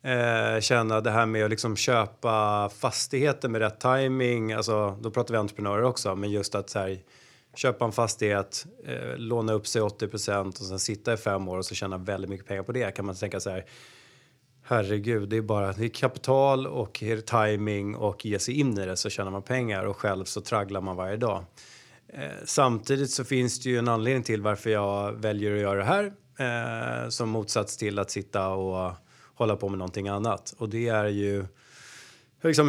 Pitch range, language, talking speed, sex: 105-125 Hz, Swedish, 195 wpm, male